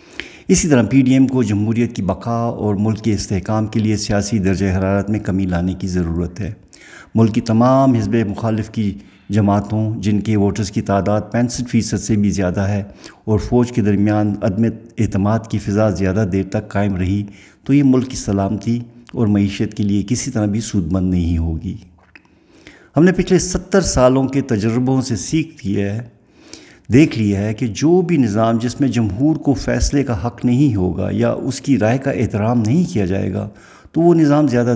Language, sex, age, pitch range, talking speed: Urdu, male, 50-69, 100-130 Hz, 195 wpm